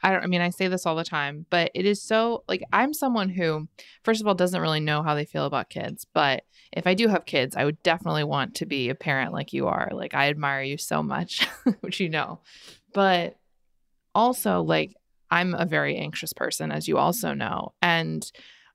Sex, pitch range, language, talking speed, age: female, 150-190 Hz, English, 220 wpm, 20-39